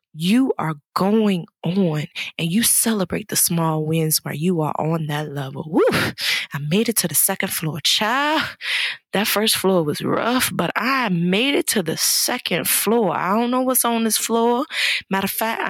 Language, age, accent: English, 20-39, American